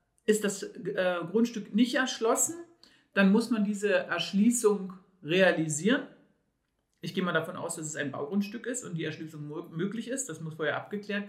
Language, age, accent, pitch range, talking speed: German, 50-69, German, 170-215 Hz, 165 wpm